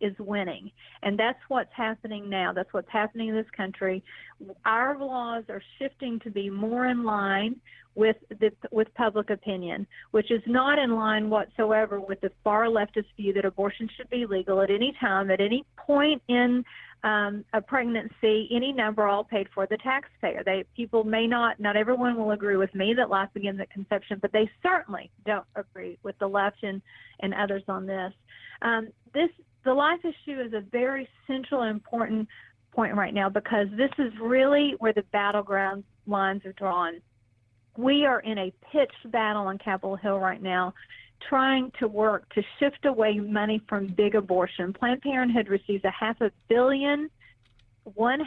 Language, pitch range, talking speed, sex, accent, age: English, 200-240 Hz, 175 wpm, female, American, 40-59